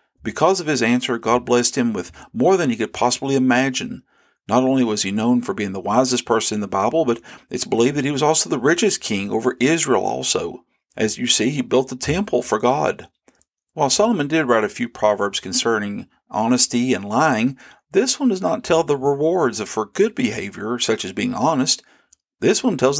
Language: English